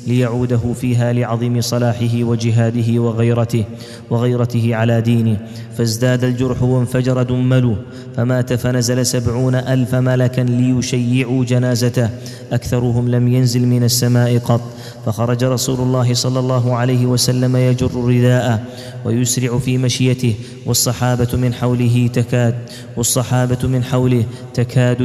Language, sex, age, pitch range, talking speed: Arabic, male, 20-39, 120-125 Hz, 110 wpm